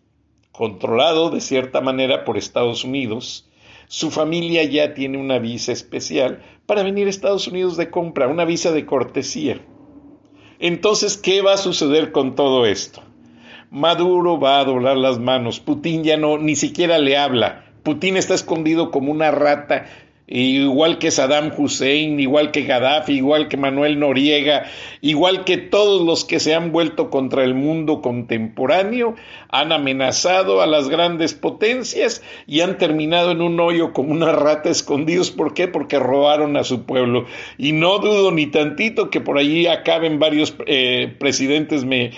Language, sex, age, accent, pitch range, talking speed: Spanish, male, 50-69, Mexican, 130-170 Hz, 155 wpm